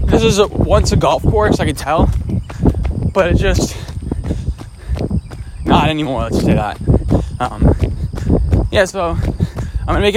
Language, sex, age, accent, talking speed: English, male, 20-39, American, 155 wpm